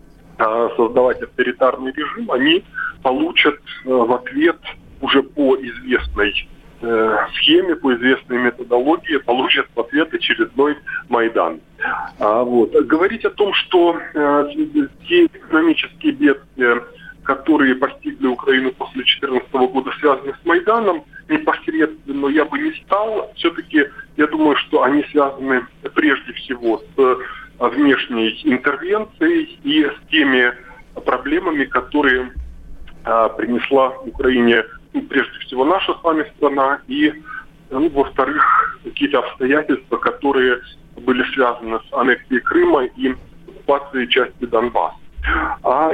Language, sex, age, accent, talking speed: Russian, male, 20-39, native, 110 wpm